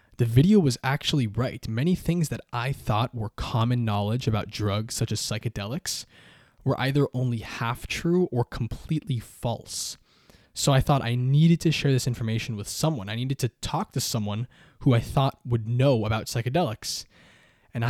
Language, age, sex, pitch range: English, 20-39, male, 115-145 Hz